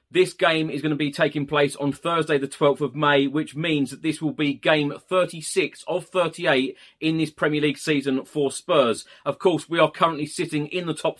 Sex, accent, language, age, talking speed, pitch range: male, British, English, 30-49, 215 wpm, 130-165 Hz